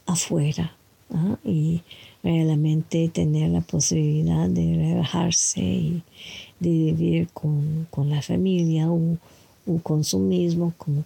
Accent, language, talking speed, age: American, English, 115 wpm, 50-69